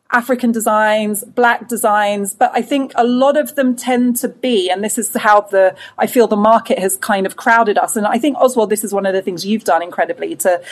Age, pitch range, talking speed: 30-49, 200-250 Hz, 235 wpm